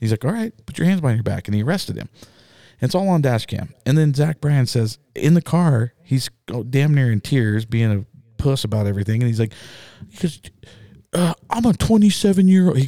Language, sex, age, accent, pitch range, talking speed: English, male, 40-59, American, 105-140 Hz, 220 wpm